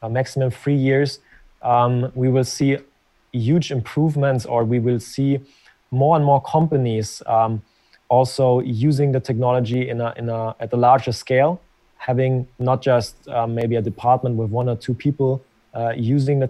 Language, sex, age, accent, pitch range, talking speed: English, male, 20-39, German, 120-140 Hz, 165 wpm